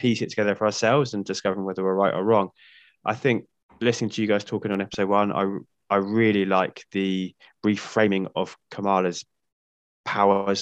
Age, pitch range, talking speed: 20-39, 90-100 Hz, 175 wpm